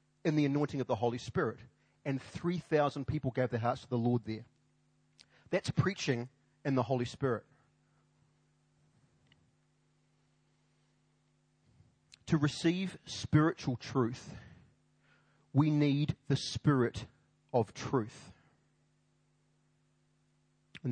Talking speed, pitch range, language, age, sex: 100 wpm, 120-145 Hz, English, 30-49, male